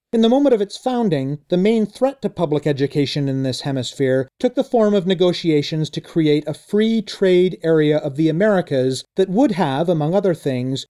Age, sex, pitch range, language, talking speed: 40-59, male, 150-205 Hz, English, 185 wpm